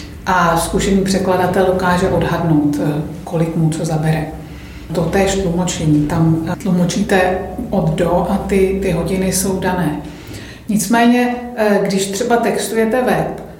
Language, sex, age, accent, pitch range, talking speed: Czech, female, 50-69, native, 180-200 Hz, 120 wpm